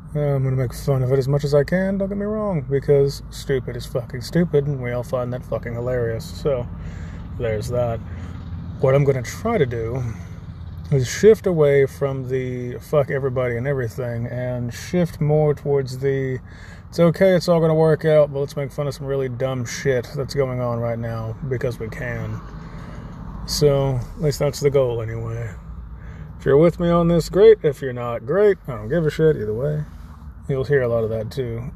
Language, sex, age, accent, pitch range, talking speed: English, male, 30-49, American, 110-145 Hz, 205 wpm